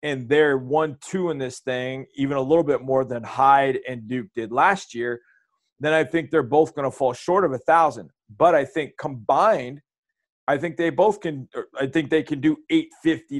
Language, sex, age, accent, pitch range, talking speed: English, male, 40-59, American, 135-165 Hz, 200 wpm